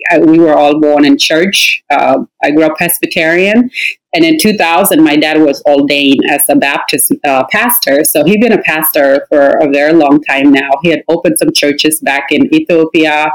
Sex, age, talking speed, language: female, 30-49, 195 wpm, English